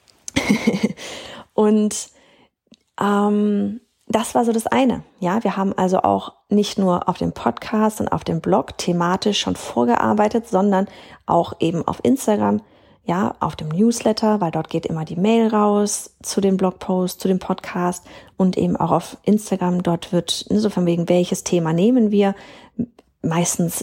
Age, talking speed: 30-49, 155 wpm